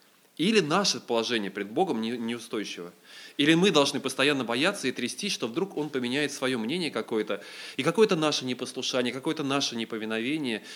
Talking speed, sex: 150 wpm, male